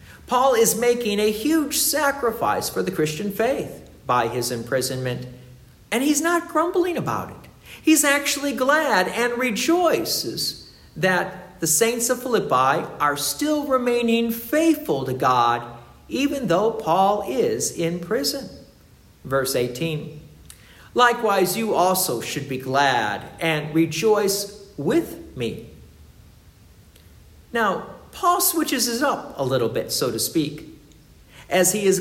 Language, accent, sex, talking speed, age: English, American, male, 125 wpm, 50-69